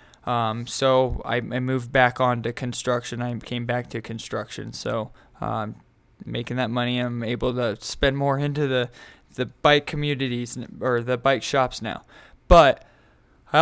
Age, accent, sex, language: 20-39, American, male, English